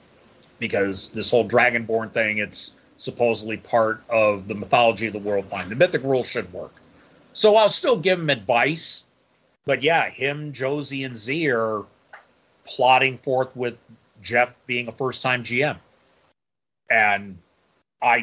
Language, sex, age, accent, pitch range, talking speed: English, male, 30-49, American, 110-140 Hz, 140 wpm